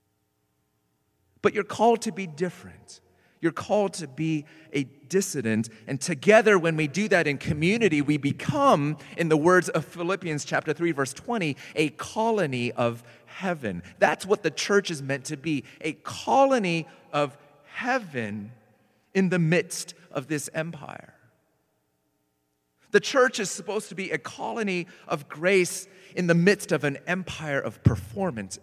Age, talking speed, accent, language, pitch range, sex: 40-59, 150 wpm, American, English, 140-195 Hz, male